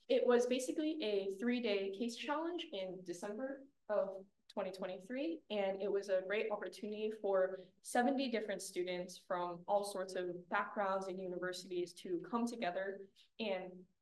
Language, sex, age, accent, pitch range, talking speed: Danish, female, 10-29, American, 185-215 Hz, 135 wpm